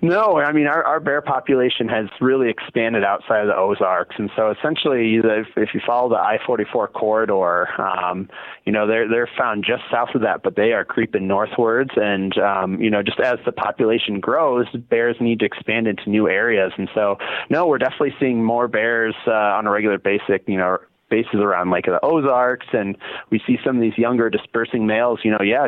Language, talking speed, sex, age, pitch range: English, 205 wpm, male, 20-39, 100-120 Hz